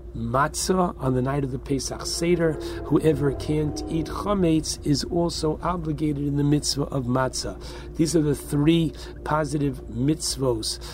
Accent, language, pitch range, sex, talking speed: American, English, 125-160 Hz, male, 145 wpm